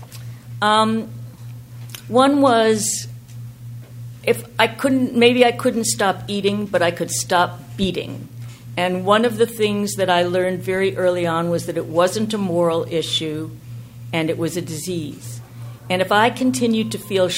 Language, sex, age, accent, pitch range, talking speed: English, female, 50-69, American, 120-195 Hz, 155 wpm